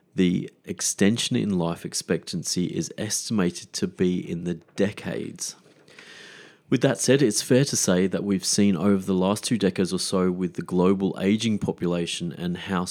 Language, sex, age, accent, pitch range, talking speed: English, male, 30-49, Australian, 90-110 Hz, 165 wpm